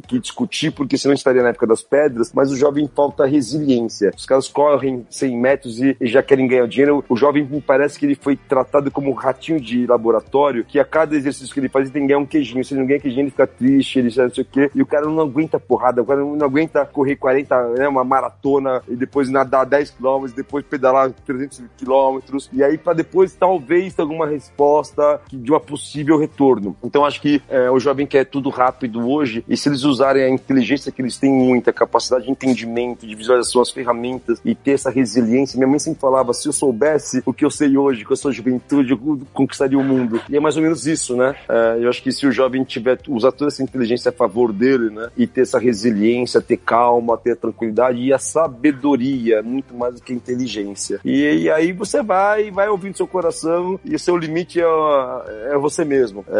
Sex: male